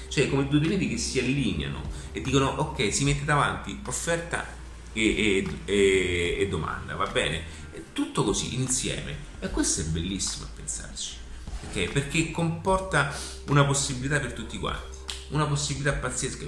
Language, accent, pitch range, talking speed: Italian, native, 80-120 Hz, 150 wpm